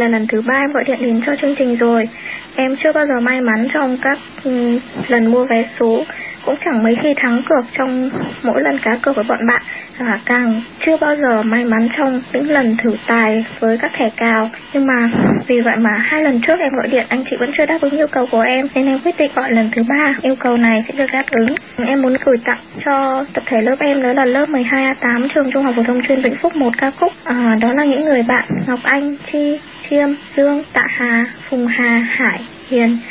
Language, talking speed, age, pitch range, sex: Vietnamese, 235 wpm, 20-39, 240-285 Hz, male